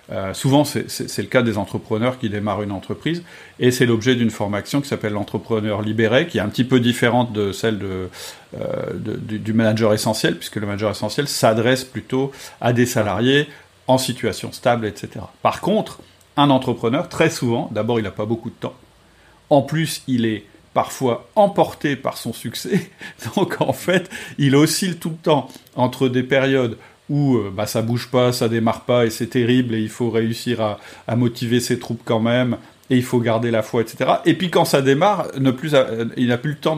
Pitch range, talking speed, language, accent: 115-145 Hz, 200 wpm, French, French